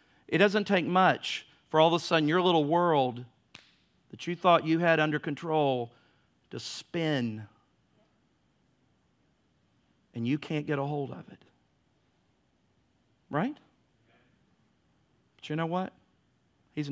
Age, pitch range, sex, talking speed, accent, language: 50-69, 130-165 Hz, male, 125 wpm, American, English